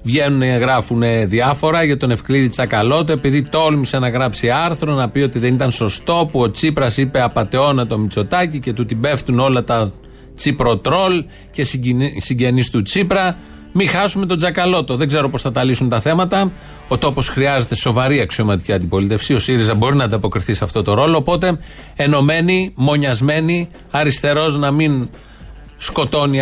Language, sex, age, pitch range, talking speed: Greek, male, 40-59, 120-160 Hz, 160 wpm